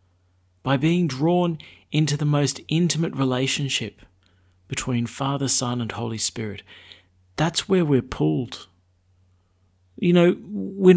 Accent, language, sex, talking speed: Australian, English, male, 115 wpm